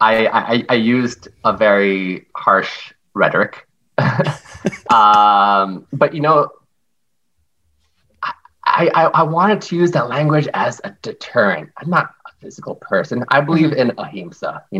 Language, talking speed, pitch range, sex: English, 135 wpm, 100-150 Hz, male